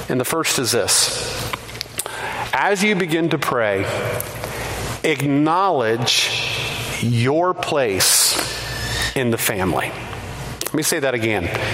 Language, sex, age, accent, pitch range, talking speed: English, male, 40-59, American, 135-220 Hz, 105 wpm